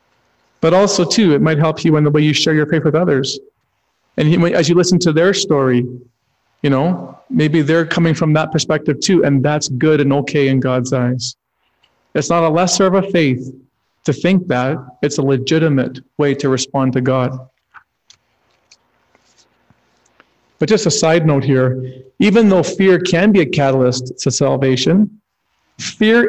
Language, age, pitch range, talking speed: English, 40-59, 130-180 Hz, 170 wpm